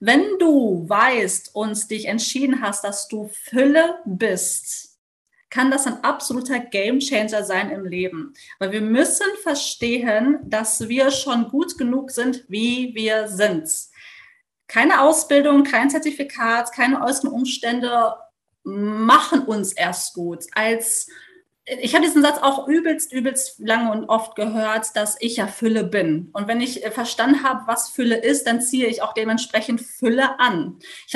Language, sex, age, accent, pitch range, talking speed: German, female, 30-49, German, 220-275 Hz, 145 wpm